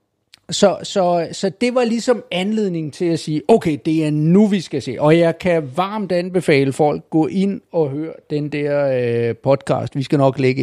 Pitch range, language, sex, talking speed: 135-185 Hz, Danish, male, 200 wpm